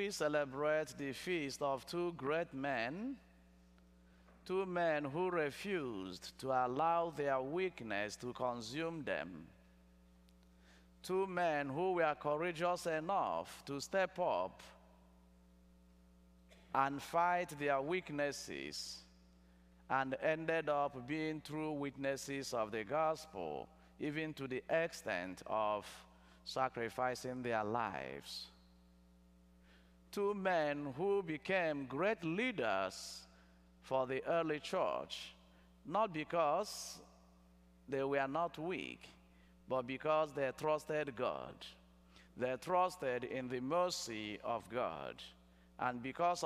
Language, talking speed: English, 100 wpm